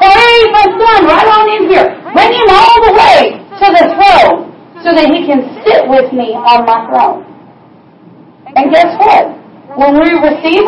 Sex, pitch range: female, 265-345 Hz